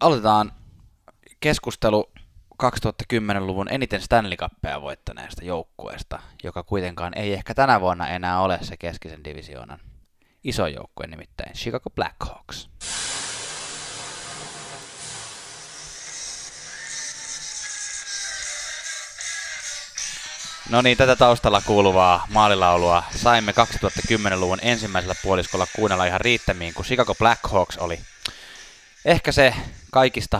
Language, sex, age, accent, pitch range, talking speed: Finnish, male, 20-39, native, 90-120 Hz, 85 wpm